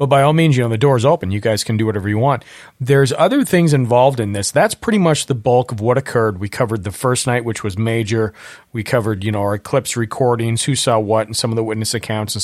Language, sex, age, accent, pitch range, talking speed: English, male, 40-59, American, 110-135 Hz, 270 wpm